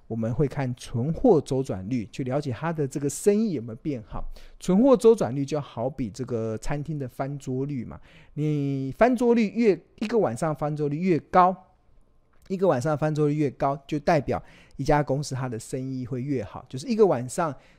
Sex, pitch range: male, 120-160 Hz